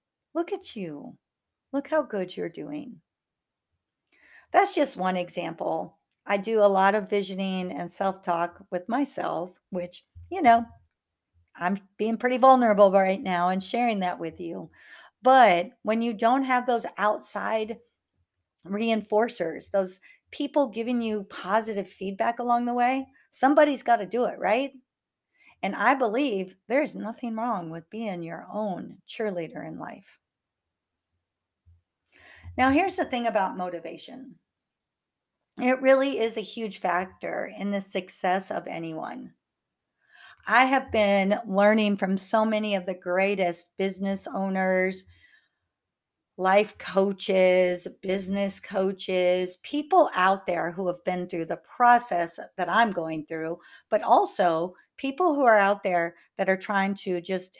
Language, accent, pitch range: English, American, 180-235 Hz